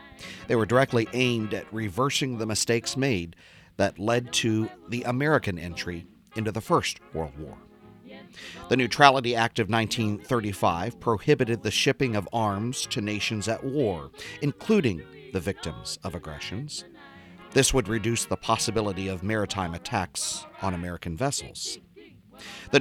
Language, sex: English, male